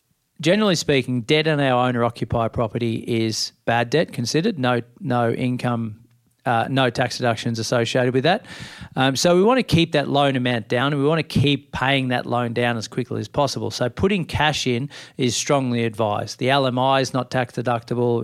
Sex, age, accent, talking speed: male, 40-59, Australian, 190 wpm